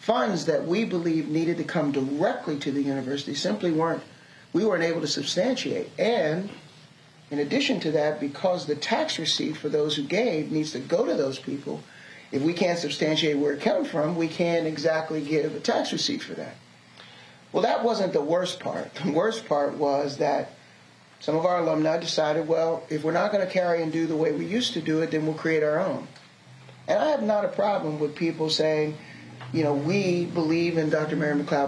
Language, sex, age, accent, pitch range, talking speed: English, male, 40-59, American, 145-170 Hz, 205 wpm